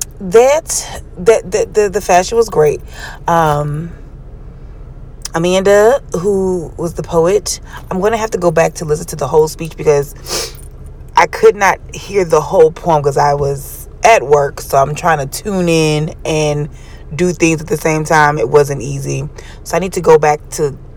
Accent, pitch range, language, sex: American, 145-205 Hz, English, female